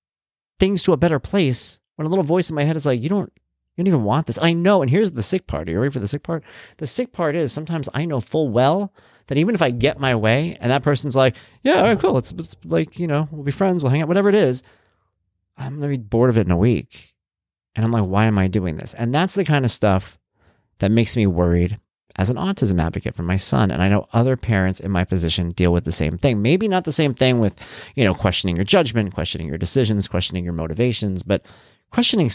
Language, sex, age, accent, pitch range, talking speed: English, male, 30-49, American, 95-145 Hz, 260 wpm